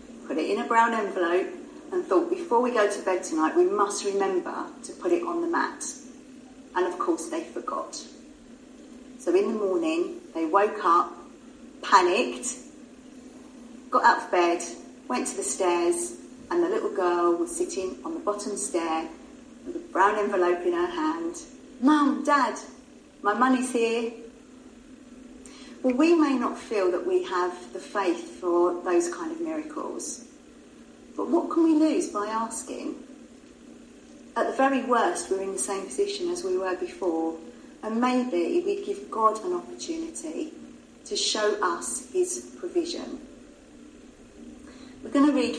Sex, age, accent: female, 40-59, British